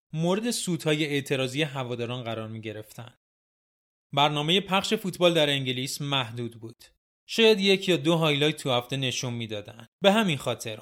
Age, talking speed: 30-49, 140 wpm